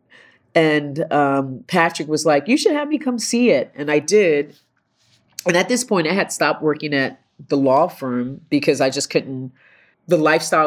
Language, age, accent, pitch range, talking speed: English, 30-49, American, 130-170 Hz, 185 wpm